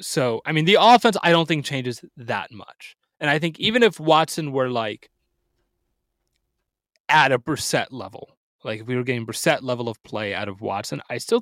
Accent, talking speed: American, 195 wpm